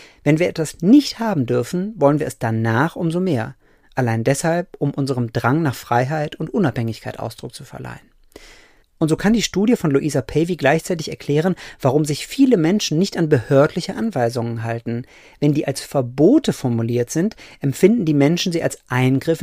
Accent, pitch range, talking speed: German, 130-170 Hz, 170 wpm